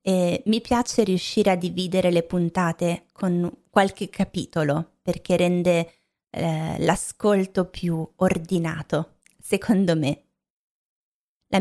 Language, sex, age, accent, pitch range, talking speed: Italian, female, 20-39, native, 165-195 Hz, 105 wpm